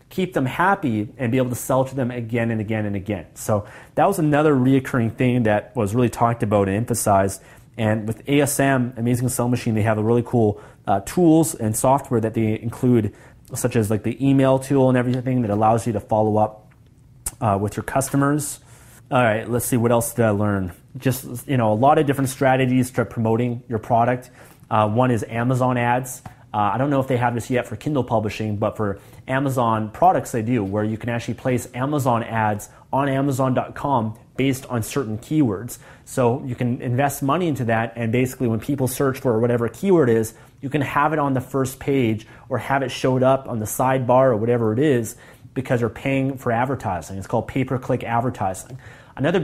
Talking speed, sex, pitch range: 205 wpm, male, 115-135 Hz